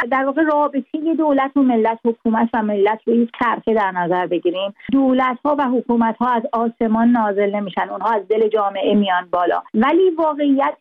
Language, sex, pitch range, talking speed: Persian, female, 225-270 Hz, 170 wpm